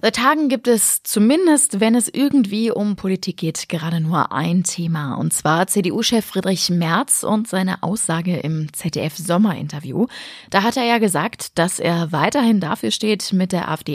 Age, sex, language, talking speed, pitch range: 20-39, female, German, 165 wpm, 175-225 Hz